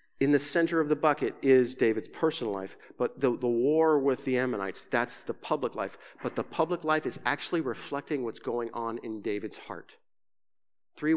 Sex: male